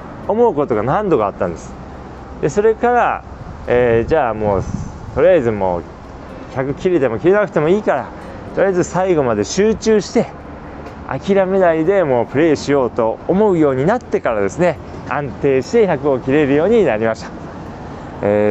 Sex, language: male, Japanese